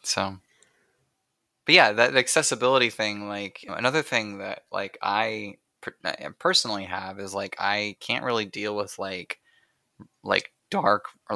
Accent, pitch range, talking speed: American, 100-120 Hz, 130 wpm